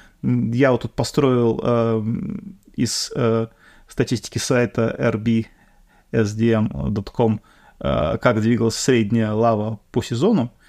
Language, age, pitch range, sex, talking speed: Russian, 30-49, 115-140 Hz, male, 95 wpm